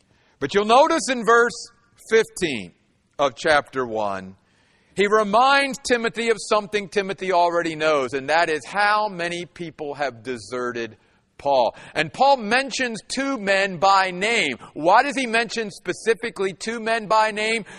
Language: English